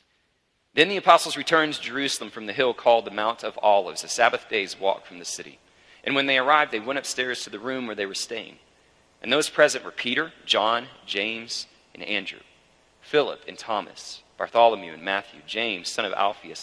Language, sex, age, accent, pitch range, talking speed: English, male, 40-59, American, 95-140 Hz, 195 wpm